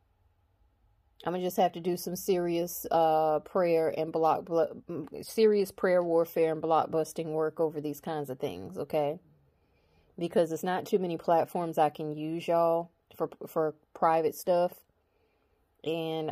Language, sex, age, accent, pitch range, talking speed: English, female, 30-49, American, 150-170 Hz, 145 wpm